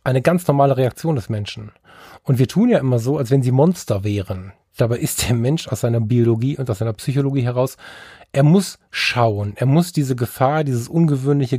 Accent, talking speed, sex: German, 195 wpm, male